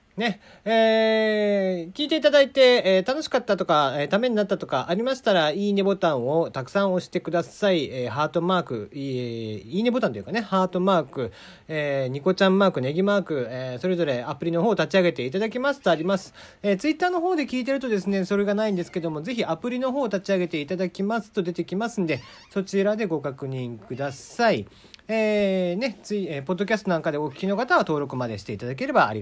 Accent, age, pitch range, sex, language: native, 40-59, 150-225 Hz, male, Japanese